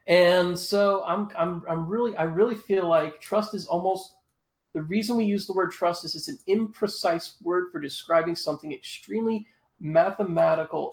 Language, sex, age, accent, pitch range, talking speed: English, male, 30-49, American, 145-180 Hz, 165 wpm